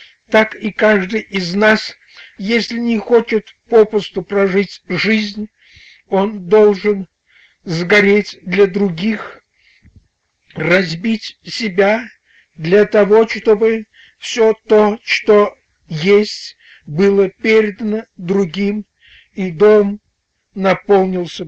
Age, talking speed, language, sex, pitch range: 60-79, 85 wpm, Russian, male, 200-235 Hz